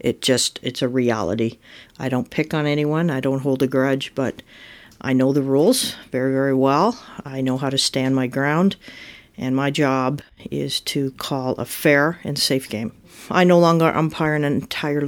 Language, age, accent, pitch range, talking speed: English, 50-69, American, 130-150 Hz, 190 wpm